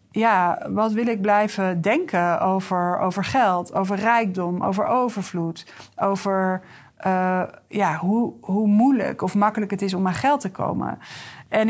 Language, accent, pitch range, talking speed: Dutch, Dutch, 190-230 Hz, 150 wpm